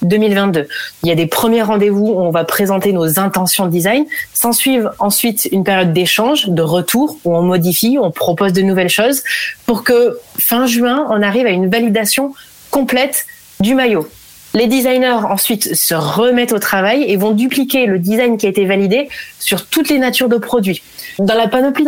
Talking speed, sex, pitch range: 185 wpm, female, 190-250 Hz